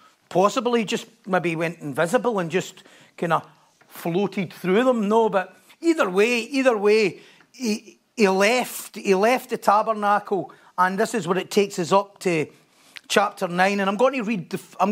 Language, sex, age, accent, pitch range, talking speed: English, male, 40-59, British, 195-230 Hz, 175 wpm